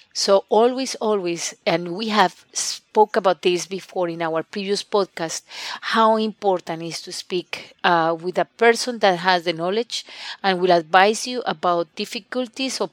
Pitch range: 170-205 Hz